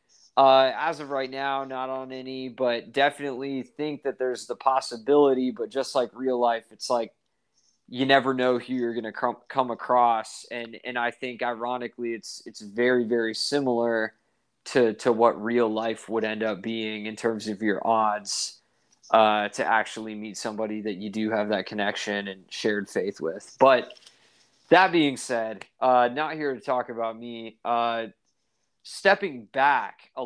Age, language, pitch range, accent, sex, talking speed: 20-39, English, 115-135 Hz, American, male, 170 wpm